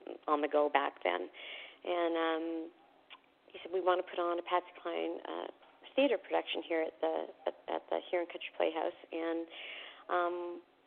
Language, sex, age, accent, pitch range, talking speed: English, female, 40-59, American, 160-180 Hz, 175 wpm